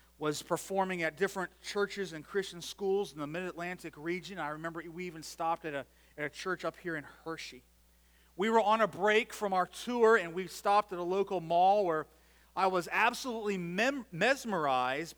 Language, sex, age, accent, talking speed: English, male, 40-59, American, 185 wpm